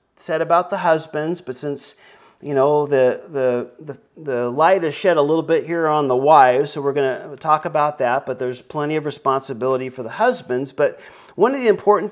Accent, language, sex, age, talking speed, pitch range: American, English, male, 40-59, 210 wpm, 125-160 Hz